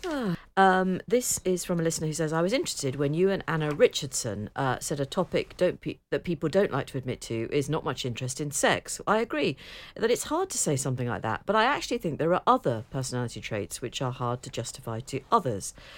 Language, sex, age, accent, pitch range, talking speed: English, female, 50-69, British, 135-190 Hz, 230 wpm